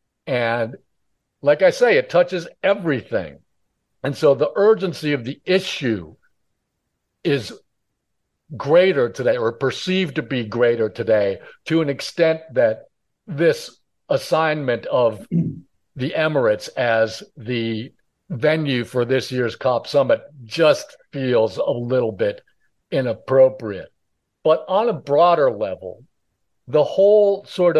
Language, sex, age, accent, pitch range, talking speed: English, male, 60-79, American, 130-185 Hz, 115 wpm